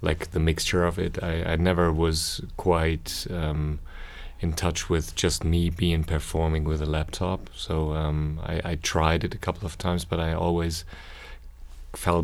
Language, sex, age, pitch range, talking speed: English, male, 30-49, 80-90 Hz, 170 wpm